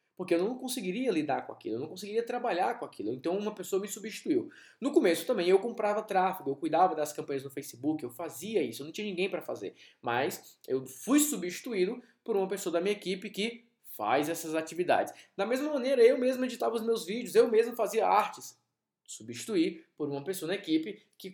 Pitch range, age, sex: 155-245 Hz, 20-39, male